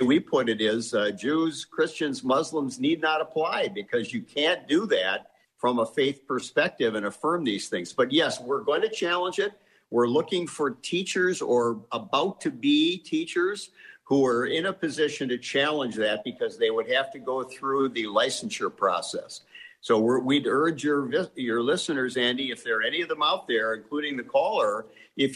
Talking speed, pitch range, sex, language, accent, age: 180 wpm, 115-160 Hz, male, English, American, 50-69